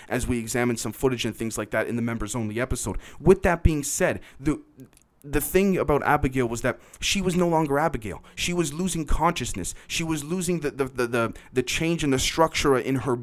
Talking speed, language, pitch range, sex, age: 220 wpm, English, 115-145 Hz, male, 30-49